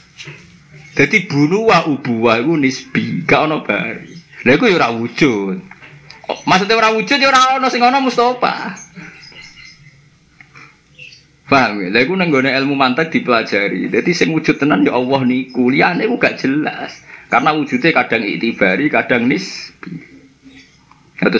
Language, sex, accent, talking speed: Indonesian, male, native, 130 wpm